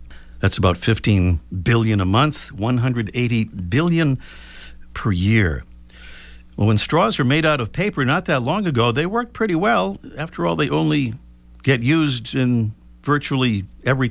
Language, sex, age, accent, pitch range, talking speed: English, male, 50-69, American, 85-130 Hz, 150 wpm